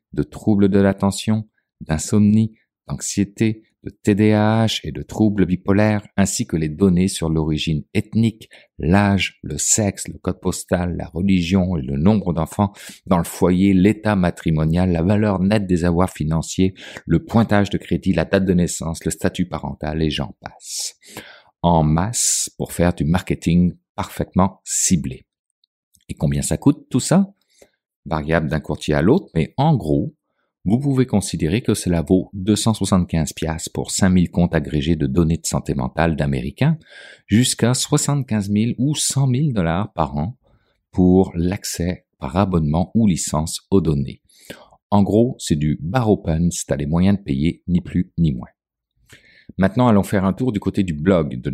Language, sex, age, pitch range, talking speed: French, male, 50-69, 80-105 Hz, 160 wpm